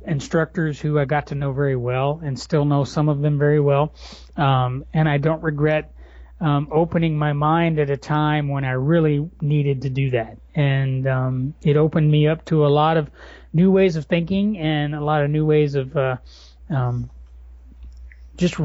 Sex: male